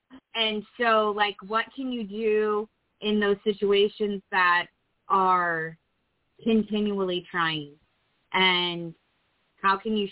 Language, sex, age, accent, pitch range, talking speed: English, female, 20-39, American, 180-210 Hz, 105 wpm